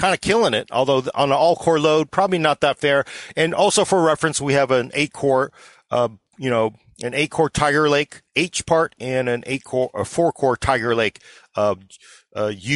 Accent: American